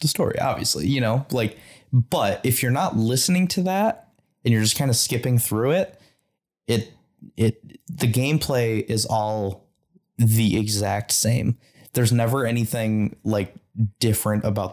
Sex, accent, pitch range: male, American, 105-130 Hz